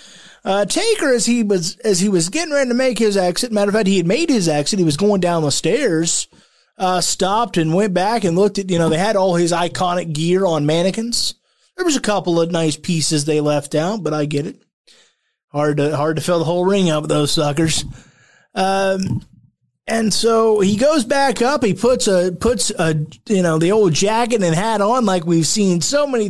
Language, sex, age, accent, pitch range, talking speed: English, male, 20-39, American, 165-225 Hz, 220 wpm